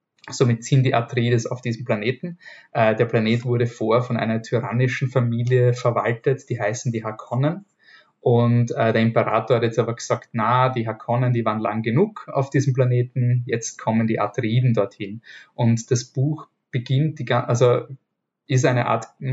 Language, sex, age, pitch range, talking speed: German, male, 20-39, 115-130 Hz, 160 wpm